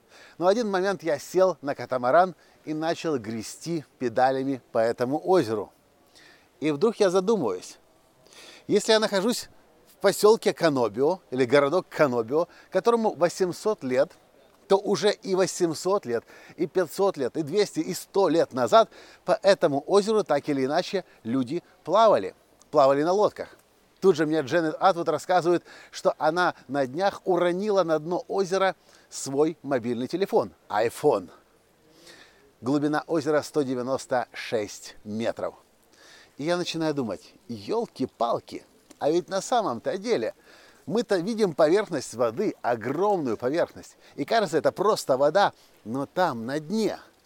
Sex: male